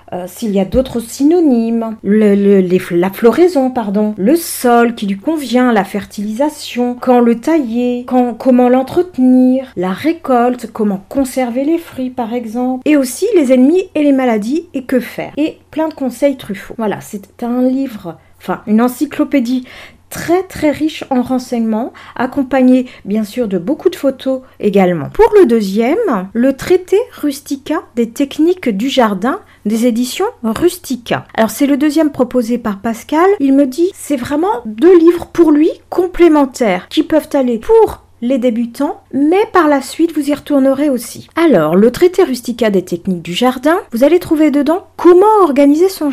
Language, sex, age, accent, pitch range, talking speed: French, female, 40-59, French, 230-305 Hz, 165 wpm